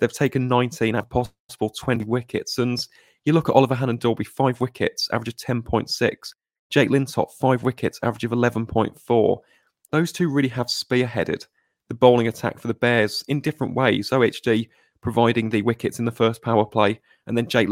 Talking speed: 175 wpm